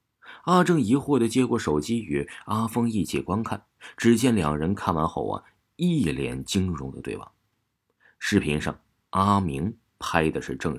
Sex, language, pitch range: male, Chinese, 80-115 Hz